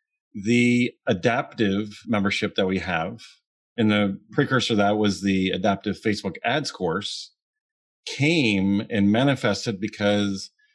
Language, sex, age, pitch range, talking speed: English, male, 40-59, 100-120 Hz, 110 wpm